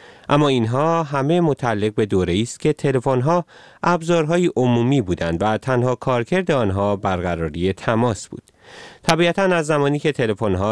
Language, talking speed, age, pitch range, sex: Persian, 145 wpm, 30-49, 100-145 Hz, male